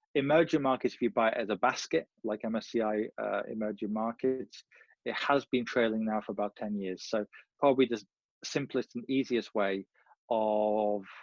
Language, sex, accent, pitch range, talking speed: English, male, British, 110-130 Hz, 165 wpm